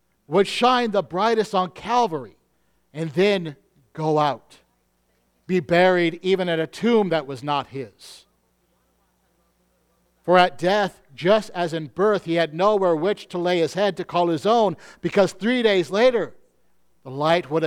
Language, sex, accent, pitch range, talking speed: English, male, American, 150-210 Hz, 155 wpm